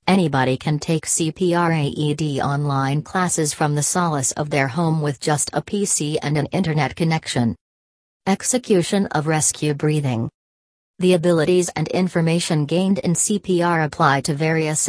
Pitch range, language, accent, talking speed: 145-175 Hz, English, American, 140 wpm